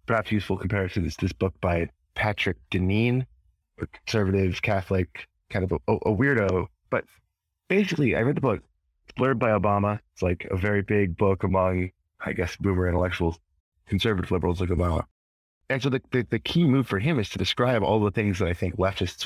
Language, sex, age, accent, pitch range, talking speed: English, male, 30-49, American, 85-105 Hz, 190 wpm